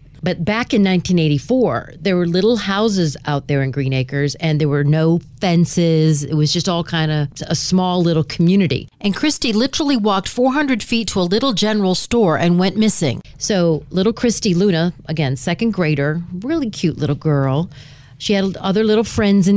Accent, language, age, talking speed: American, English, 40-59, 180 wpm